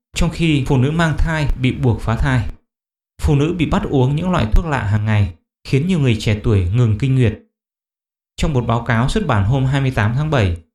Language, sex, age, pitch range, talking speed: English, male, 20-39, 115-150 Hz, 220 wpm